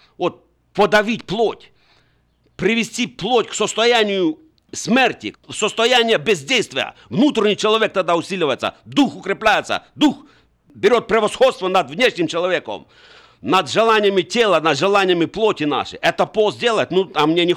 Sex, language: male, Russian